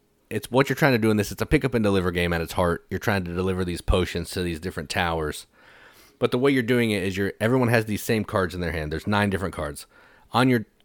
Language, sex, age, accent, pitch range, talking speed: English, male, 30-49, American, 90-115 Hz, 260 wpm